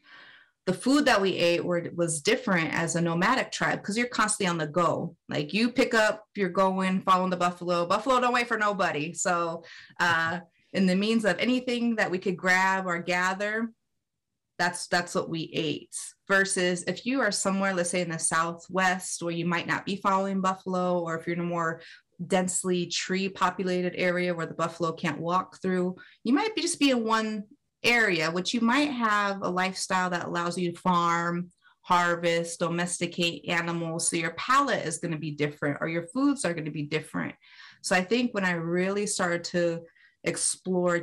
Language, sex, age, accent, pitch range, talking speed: English, female, 30-49, American, 170-205 Hz, 190 wpm